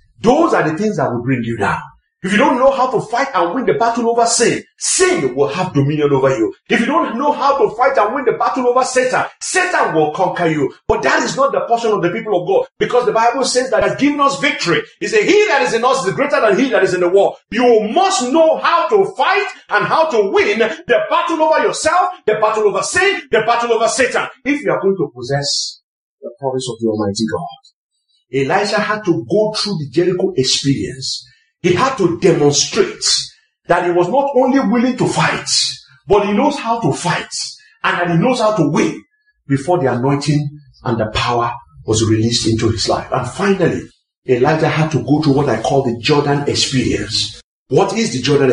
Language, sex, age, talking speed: English, male, 40-59, 220 wpm